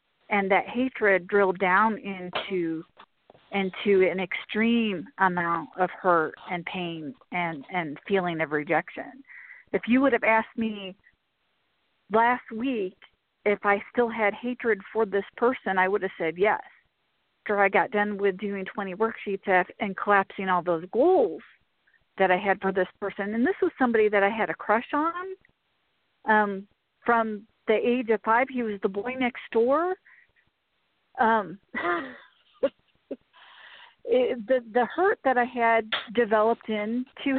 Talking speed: 145 wpm